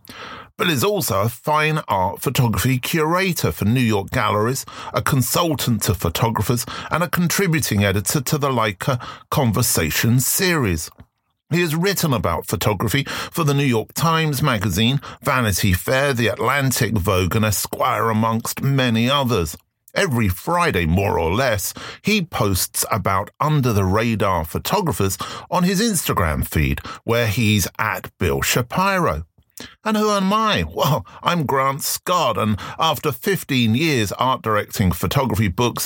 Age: 40-59